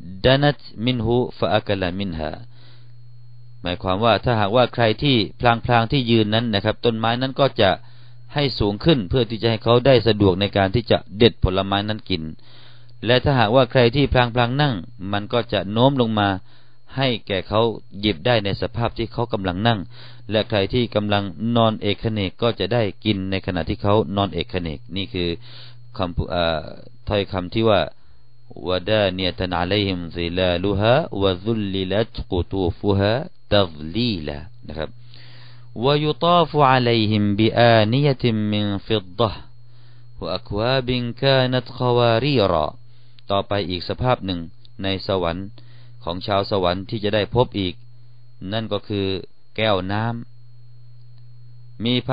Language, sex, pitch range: Thai, male, 100-120 Hz